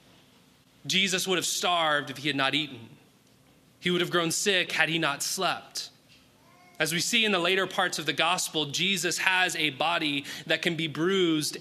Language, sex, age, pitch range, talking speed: English, male, 30-49, 145-180 Hz, 185 wpm